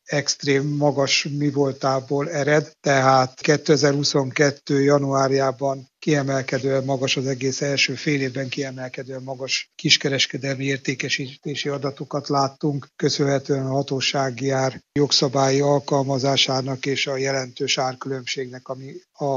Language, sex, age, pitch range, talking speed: Hungarian, male, 60-79, 130-145 Hz, 100 wpm